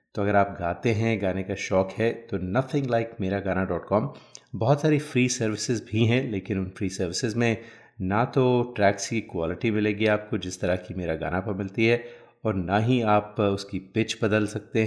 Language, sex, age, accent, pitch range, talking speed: Hindi, male, 30-49, native, 95-115 Hz, 200 wpm